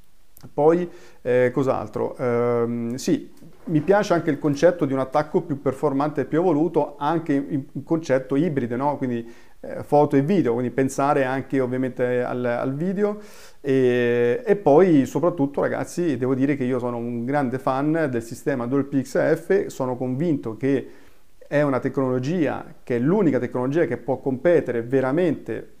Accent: native